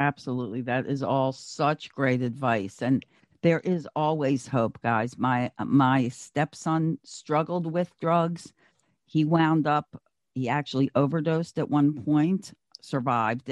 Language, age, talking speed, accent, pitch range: English, 50-69, 130 wpm, American, 135-165 Hz